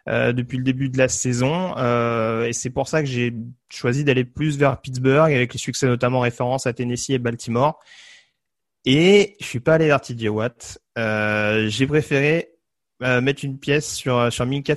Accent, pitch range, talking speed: French, 120-150 Hz, 185 wpm